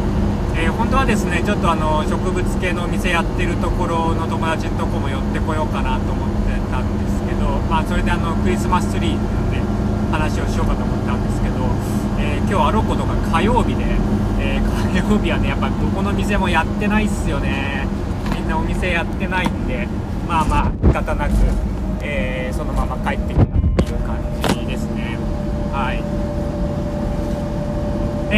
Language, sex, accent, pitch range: Japanese, male, native, 95-105 Hz